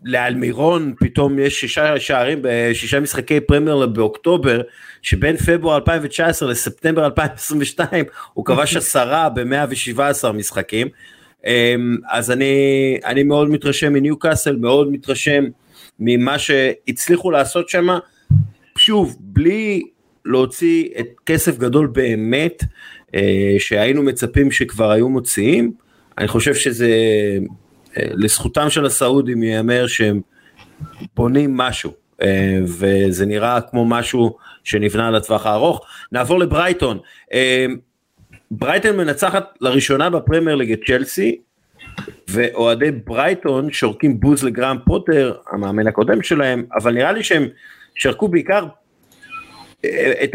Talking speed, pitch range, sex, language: 105 wpm, 115-150 Hz, male, Hebrew